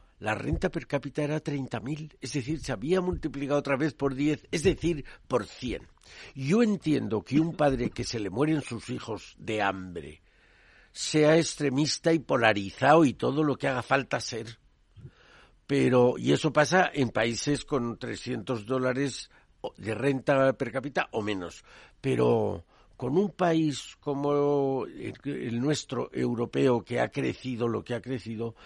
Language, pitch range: Spanish, 110-145 Hz